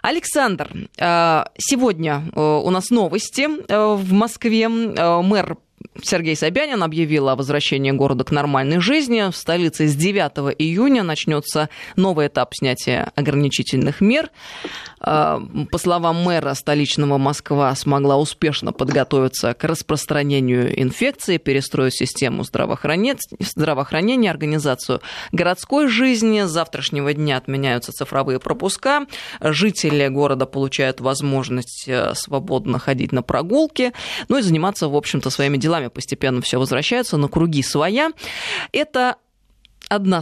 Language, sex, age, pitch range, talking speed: Russian, female, 20-39, 140-205 Hz, 110 wpm